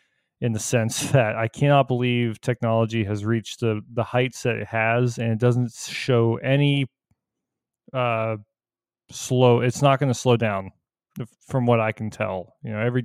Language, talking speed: English, 175 wpm